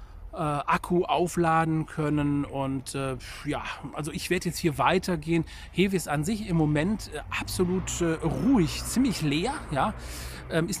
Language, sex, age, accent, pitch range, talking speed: German, male, 40-59, German, 145-185 Hz, 130 wpm